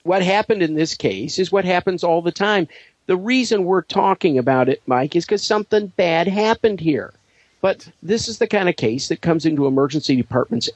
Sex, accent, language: male, American, English